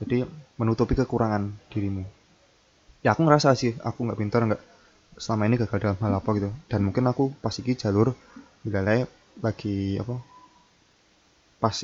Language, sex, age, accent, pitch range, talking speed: Indonesian, male, 20-39, native, 105-125 Hz, 145 wpm